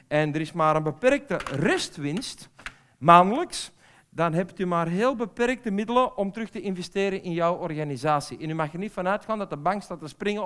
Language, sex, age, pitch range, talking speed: Dutch, male, 50-69, 160-210 Hz, 200 wpm